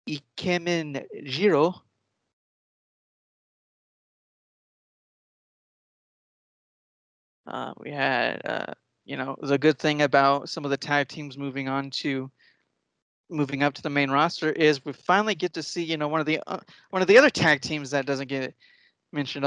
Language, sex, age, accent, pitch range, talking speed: English, male, 30-49, American, 140-165 Hz, 150 wpm